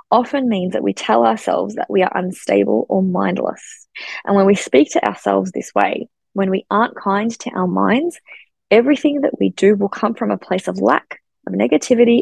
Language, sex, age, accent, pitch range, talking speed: English, female, 20-39, Australian, 185-230 Hz, 195 wpm